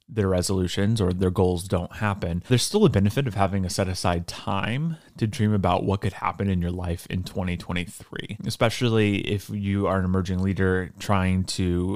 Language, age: English, 30-49